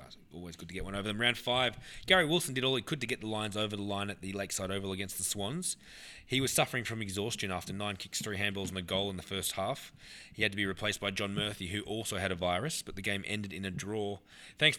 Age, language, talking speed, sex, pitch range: 20-39, English, 270 wpm, male, 95-115 Hz